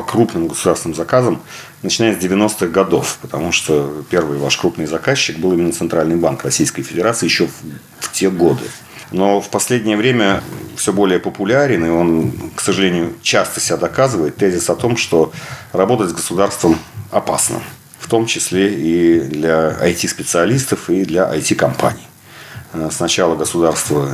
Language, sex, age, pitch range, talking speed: Russian, male, 40-59, 75-100 Hz, 140 wpm